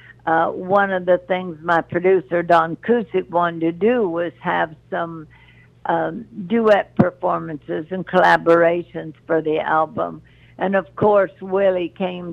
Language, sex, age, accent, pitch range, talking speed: English, female, 60-79, American, 160-185 Hz, 135 wpm